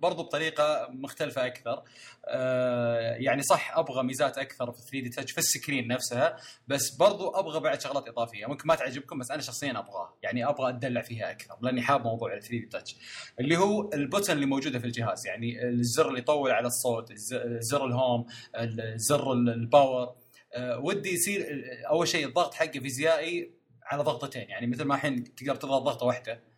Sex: male